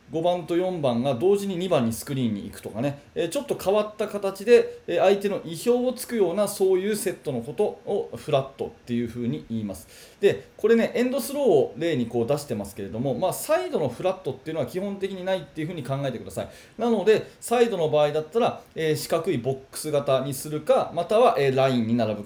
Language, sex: Japanese, male